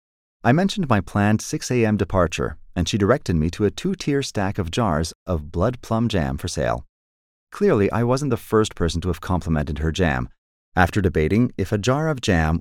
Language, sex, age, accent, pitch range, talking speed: English, male, 30-49, American, 85-135 Hz, 195 wpm